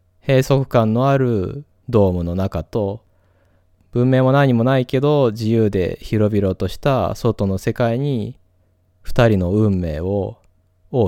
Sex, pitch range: male, 90-110 Hz